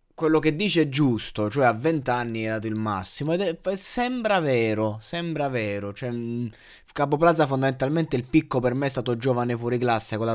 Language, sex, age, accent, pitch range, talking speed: Italian, male, 20-39, native, 115-140 Hz, 205 wpm